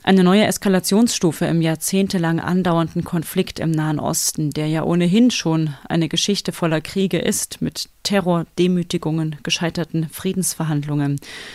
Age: 30-49